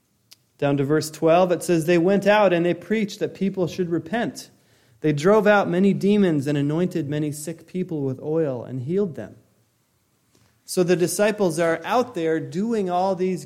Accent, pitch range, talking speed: American, 145-195 Hz, 180 wpm